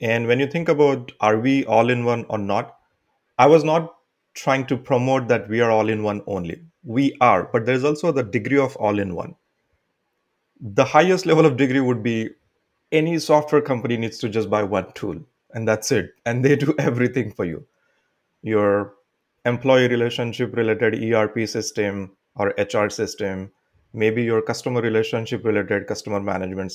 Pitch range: 110-135 Hz